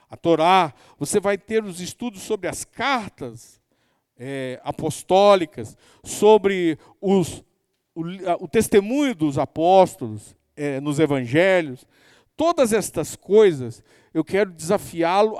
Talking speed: 115 wpm